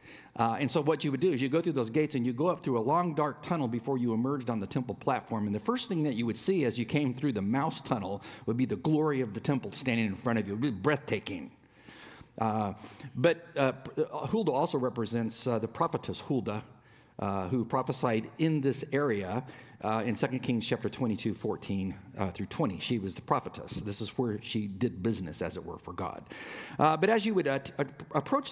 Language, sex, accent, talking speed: English, male, American, 230 wpm